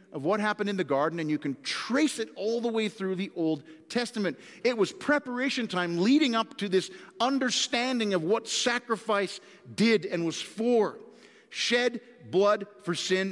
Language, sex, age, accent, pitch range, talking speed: English, male, 50-69, American, 175-240 Hz, 170 wpm